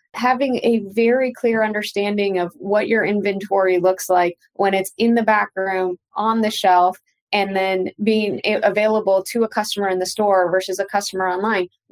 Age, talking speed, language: 20-39, 170 wpm, English